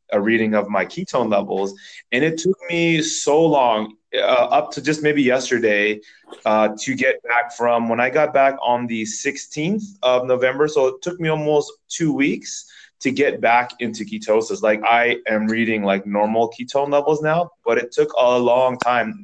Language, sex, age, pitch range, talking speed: English, male, 20-39, 110-145 Hz, 185 wpm